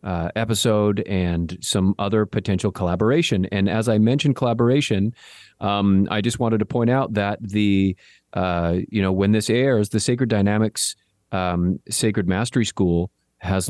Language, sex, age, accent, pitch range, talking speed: English, male, 40-59, American, 90-105 Hz, 155 wpm